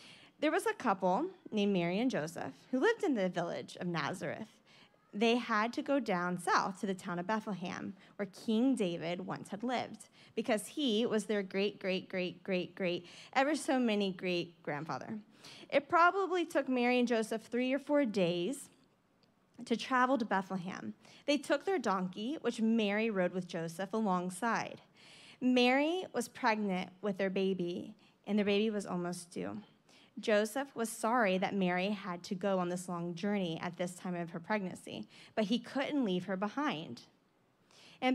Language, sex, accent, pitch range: English, female, American, 185-245 Hz